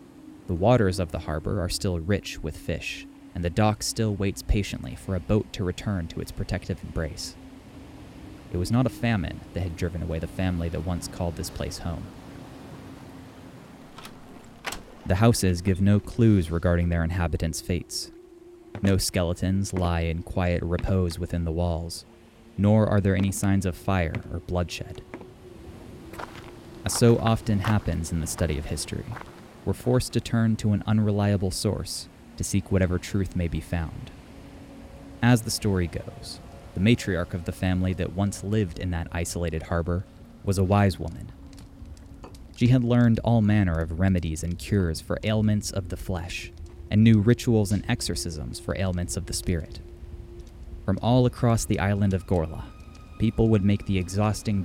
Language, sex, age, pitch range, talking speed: English, male, 20-39, 85-105 Hz, 165 wpm